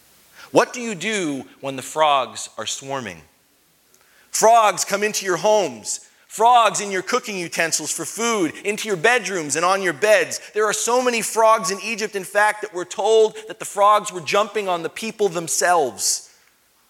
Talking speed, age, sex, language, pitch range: 175 wpm, 30-49, male, English, 170-235 Hz